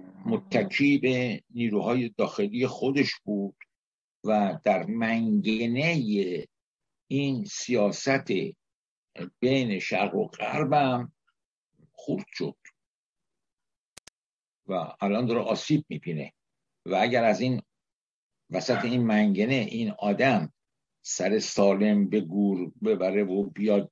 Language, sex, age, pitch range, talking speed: Persian, male, 60-79, 115-140 Hz, 95 wpm